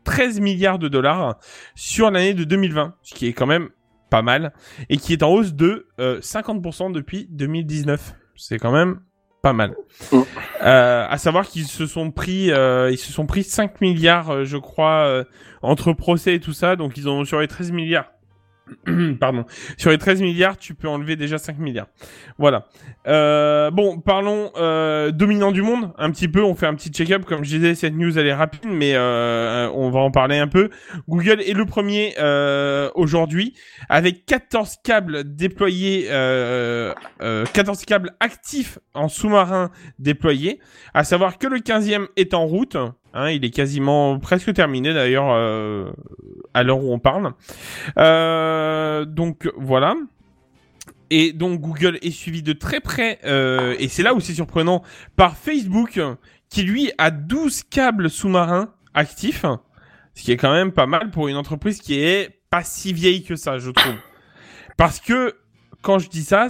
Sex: male